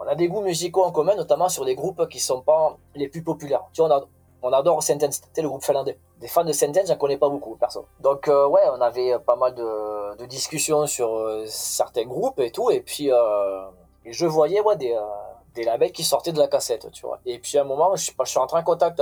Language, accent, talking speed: French, French, 270 wpm